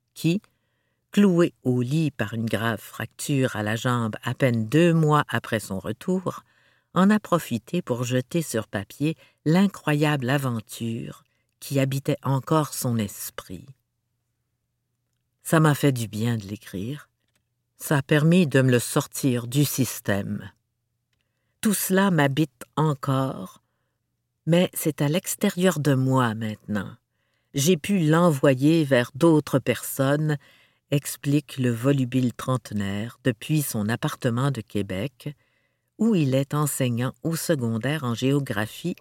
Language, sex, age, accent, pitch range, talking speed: French, female, 50-69, French, 120-150 Hz, 130 wpm